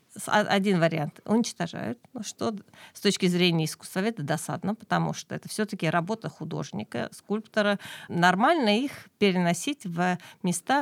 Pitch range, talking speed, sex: 170-210 Hz, 115 wpm, female